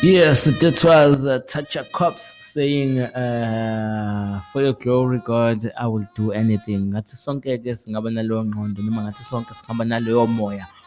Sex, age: male, 20-39